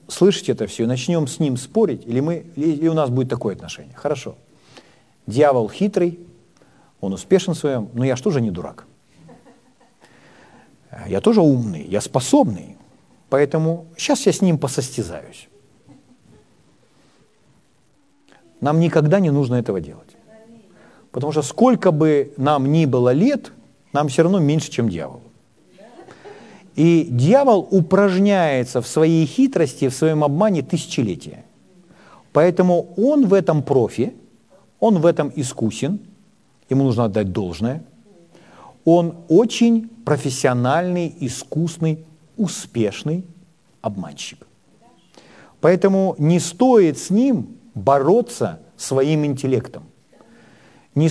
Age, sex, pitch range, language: 40-59, male, 135-185 Hz, Ukrainian